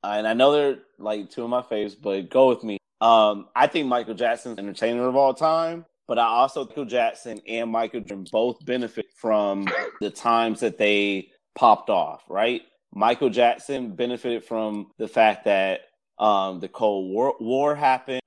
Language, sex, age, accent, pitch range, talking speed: English, male, 30-49, American, 105-125 Hz, 180 wpm